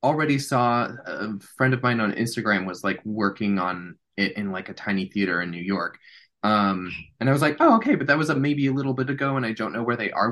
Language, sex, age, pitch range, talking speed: English, male, 20-39, 100-125 Hz, 255 wpm